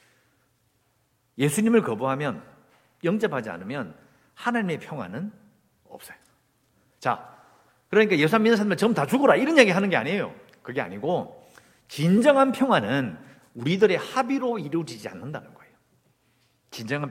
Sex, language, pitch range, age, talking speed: male, English, 135-225 Hz, 50-69, 105 wpm